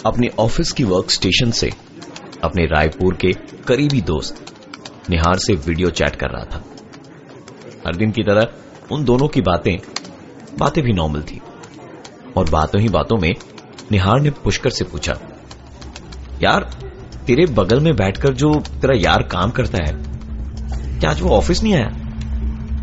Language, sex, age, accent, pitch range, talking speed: Hindi, male, 30-49, native, 70-110 Hz, 150 wpm